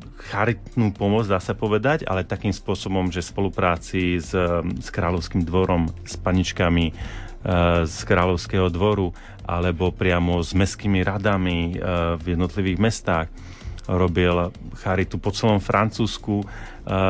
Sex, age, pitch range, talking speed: male, 30-49, 90-105 Hz, 125 wpm